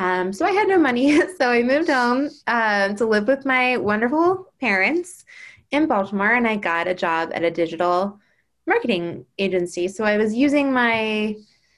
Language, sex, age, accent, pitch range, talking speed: English, female, 20-39, American, 195-255 Hz, 175 wpm